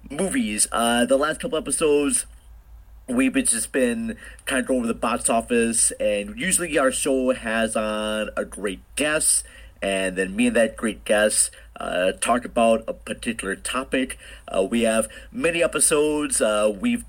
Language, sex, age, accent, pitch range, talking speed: English, male, 40-59, American, 110-175 Hz, 160 wpm